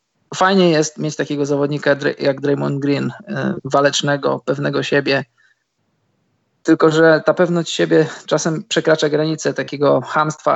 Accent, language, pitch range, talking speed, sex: native, Polish, 140-160 Hz, 120 wpm, male